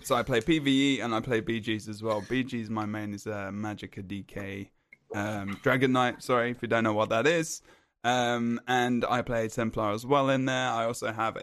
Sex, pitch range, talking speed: male, 110-145 Hz, 210 wpm